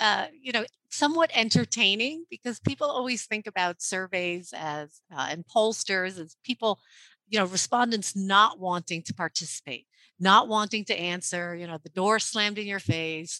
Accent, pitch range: American, 170-235 Hz